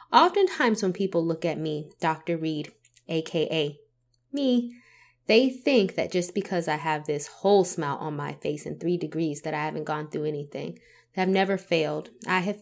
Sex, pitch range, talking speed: female, 155-185 Hz, 180 wpm